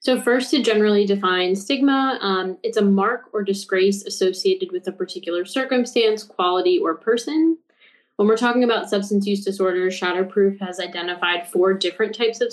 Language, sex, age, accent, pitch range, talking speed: English, female, 20-39, American, 190-260 Hz, 165 wpm